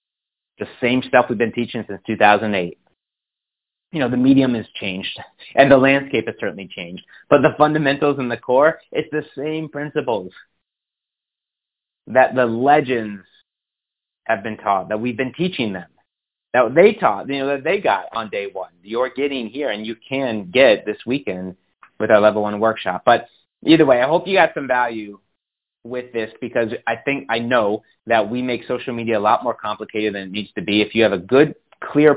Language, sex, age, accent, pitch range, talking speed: English, male, 30-49, American, 105-130 Hz, 190 wpm